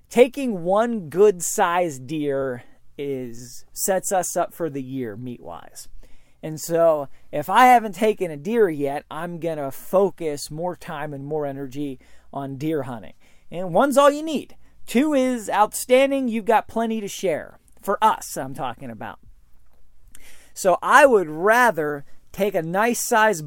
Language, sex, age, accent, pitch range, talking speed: English, male, 40-59, American, 150-210 Hz, 150 wpm